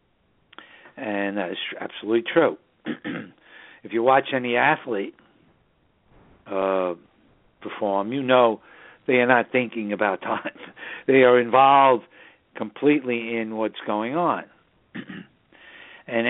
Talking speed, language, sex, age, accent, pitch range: 105 wpm, English, male, 60-79, American, 105-130 Hz